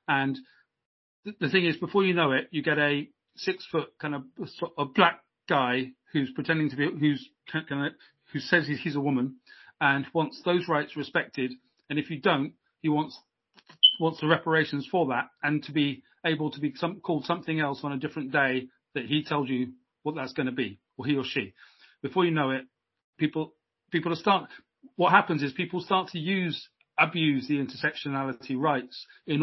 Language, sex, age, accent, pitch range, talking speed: English, male, 40-59, British, 135-160 Hz, 190 wpm